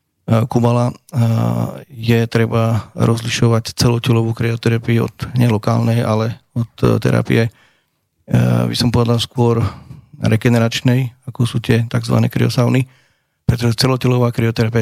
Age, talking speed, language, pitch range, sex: 30-49, 95 wpm, Slovak, 115-120 Hz, male